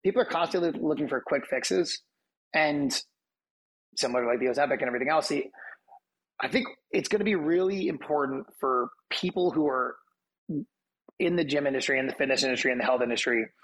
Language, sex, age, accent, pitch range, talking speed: English, male, 30-49, American, 125-155 Hz, 190 wpm